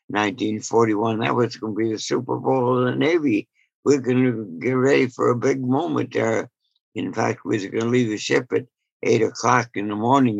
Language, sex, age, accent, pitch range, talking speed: English, male, 60-79, American, 105-125 Hz, 195 wpm